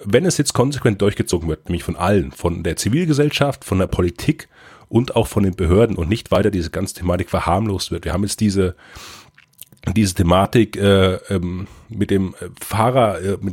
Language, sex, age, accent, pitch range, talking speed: German, male, 30-49, German, 95-125 Hz, 180 wpm